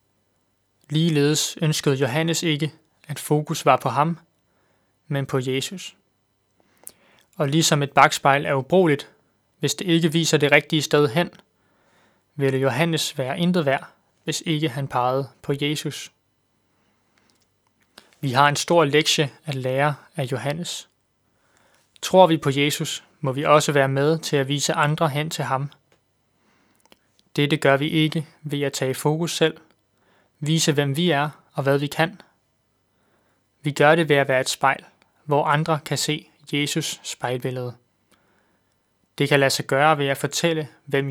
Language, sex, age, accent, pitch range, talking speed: Danish, male, 20-39, native, 135-160 Hz, 150 wpm